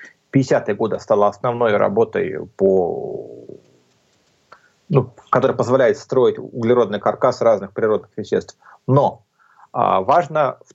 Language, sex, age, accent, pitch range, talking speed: Russian, male, 30-49, native, 115-145 Hz, 95 wpm